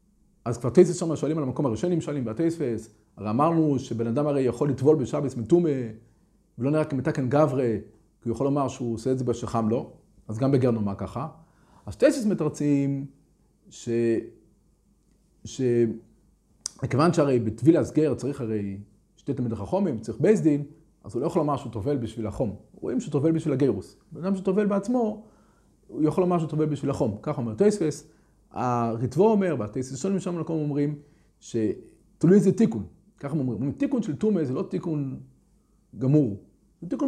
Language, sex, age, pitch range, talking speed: Hebrew, male, 30-49, 120-175 Hz, 85 wpm